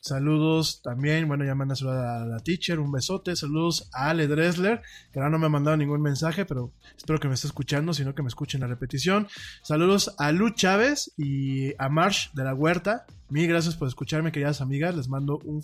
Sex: male